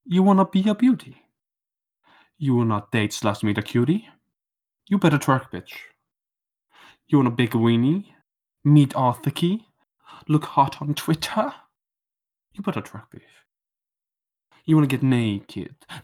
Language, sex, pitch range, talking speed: English, male, 130-170 Hz, 130 wpm